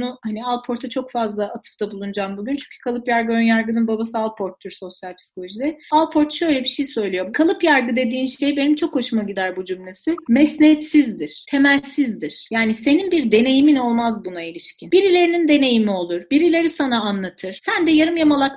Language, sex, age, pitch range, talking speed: Turkish, female, 40-59, 235-320 Hz, 165 wpm